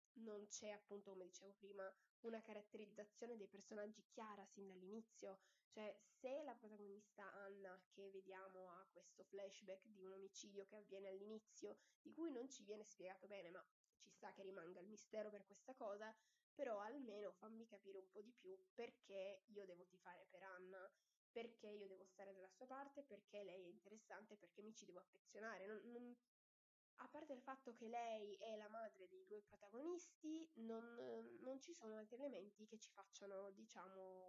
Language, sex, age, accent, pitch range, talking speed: Italian, female, 20-39, native, 195-235 Hz, 175 wpm